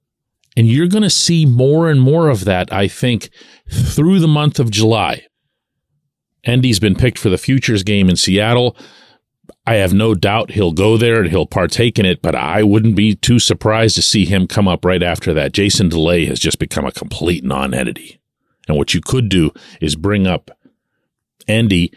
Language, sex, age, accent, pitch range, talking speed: English, male, 40-59, American, 100-145 Hz, 190 wpm